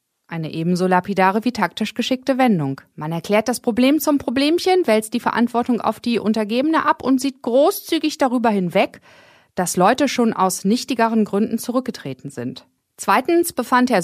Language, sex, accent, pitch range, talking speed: German, female, German, 185-270 Hz, 155 wpm